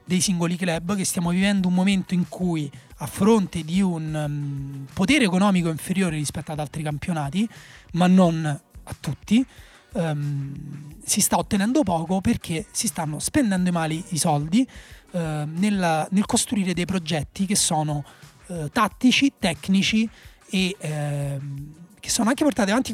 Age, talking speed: 30-49, 145 wpm